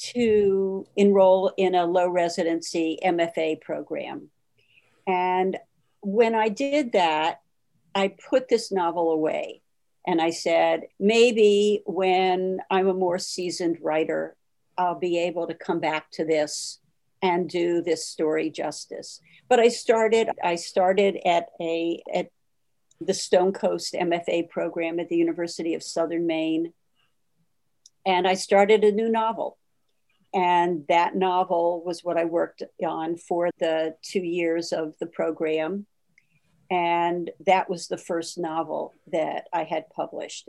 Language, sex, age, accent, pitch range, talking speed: English, female, 60-79, American, 165-200 Hz, 135 wpm